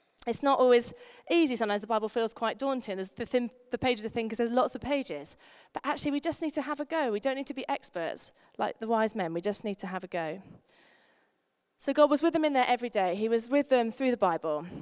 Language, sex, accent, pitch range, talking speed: English, female, British, 180-255 Hz, 260 wpm